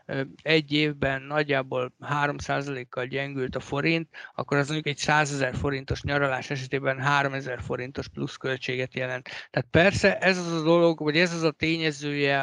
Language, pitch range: Hungarian, 140-160 Hz